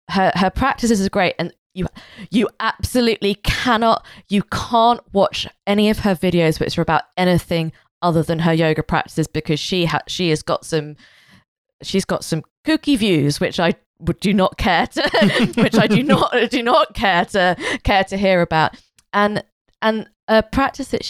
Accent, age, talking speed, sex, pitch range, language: British, 20-39, 175 wpm, female, 165-210 Hz, English